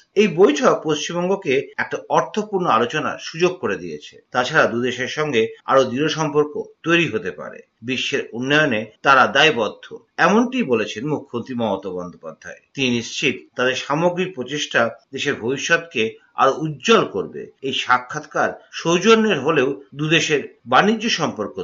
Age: 50-69